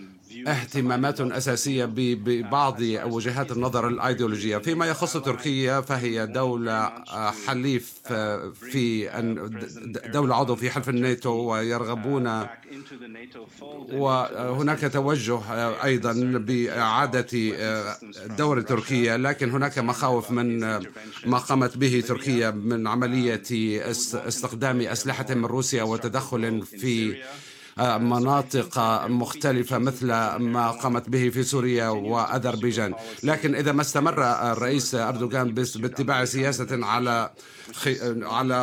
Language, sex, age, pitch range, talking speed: Arabic, male, 50-69, 115-135 Hz, 95 wpm